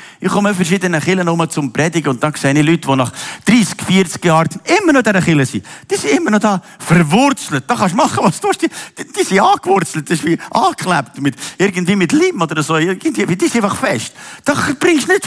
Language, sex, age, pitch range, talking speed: German, male, 50-69, 145-210 Hz, 230 wpm